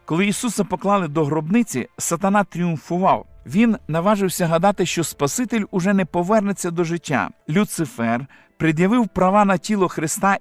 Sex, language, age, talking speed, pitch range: male, Ukrainian, 50-69, 135 wpm, 155-195 Hz